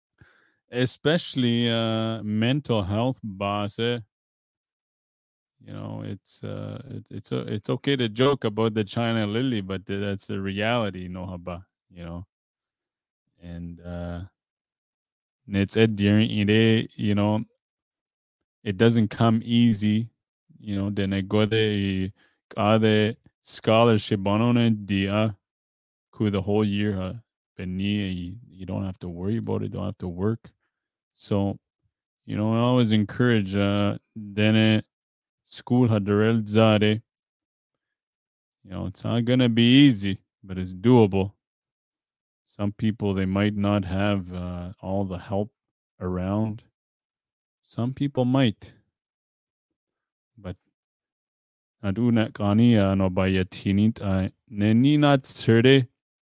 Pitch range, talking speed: 95-115 Hz, 105 wpm